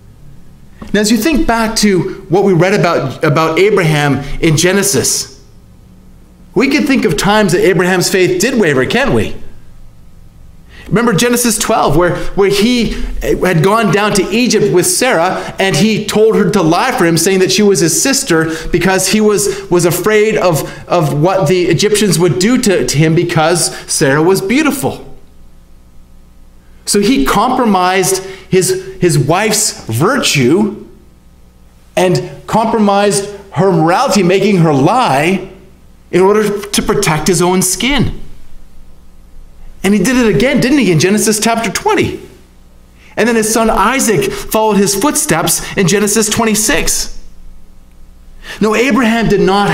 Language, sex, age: English, male, 30-49